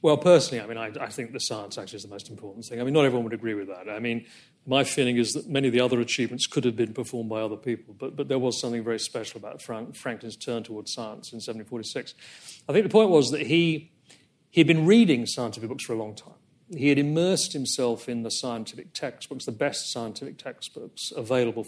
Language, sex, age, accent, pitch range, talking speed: English, male, 40-59, British, 115-150 Hz, 235 wpm